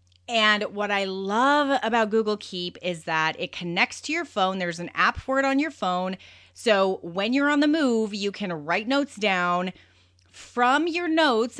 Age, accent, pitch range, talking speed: 30-49, American, 175-225 Hz, 185 wpm